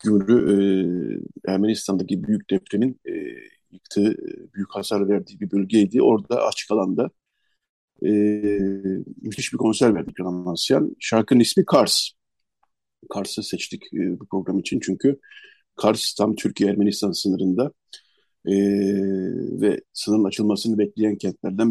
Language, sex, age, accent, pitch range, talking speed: Turkish, male, 50-69, native, 100-125 Hz, 115 wpm